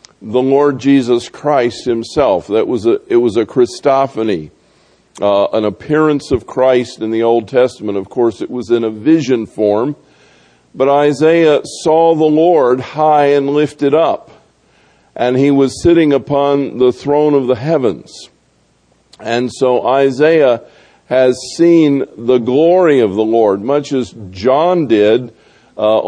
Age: 50-69